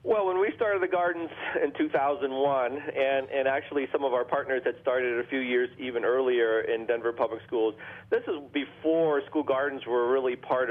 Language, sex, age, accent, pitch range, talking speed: English, male, 40-59, American, 120-145 Hz, 190 wpm